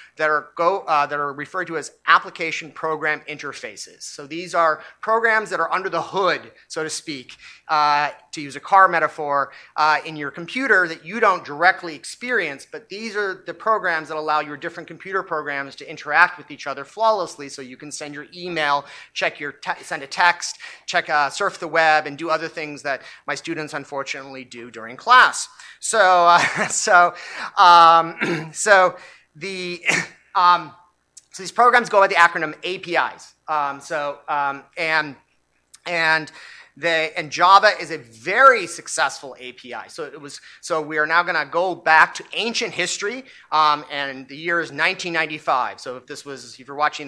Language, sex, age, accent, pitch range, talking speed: English, male, 30-49, American, 150-180 Hz, 175 wpm